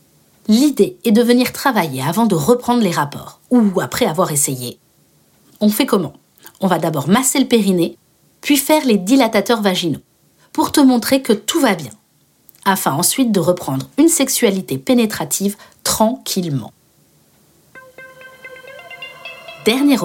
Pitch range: 190-250 Hz